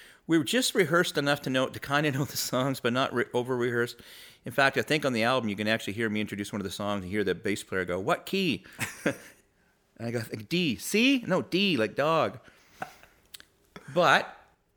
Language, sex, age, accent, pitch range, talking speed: English, male, 40-59, American, 110-155 Hz, 215 wpm